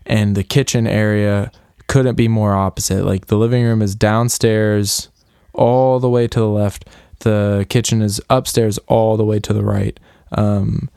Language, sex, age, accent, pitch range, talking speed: English, male, 20-39, American, 100-115 Hz, 170 wpm